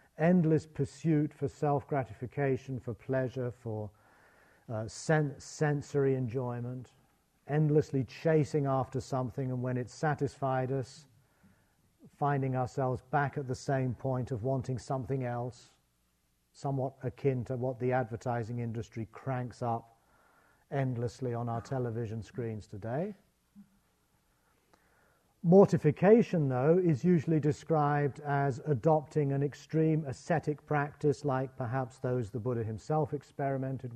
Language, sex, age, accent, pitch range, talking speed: English, male, 40-59, British, 120-145 Hz, 110 wpm